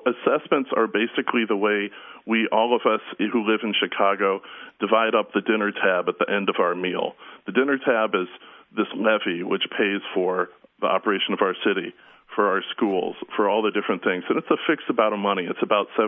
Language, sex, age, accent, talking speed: English, male, 40-59, American, 205 wpm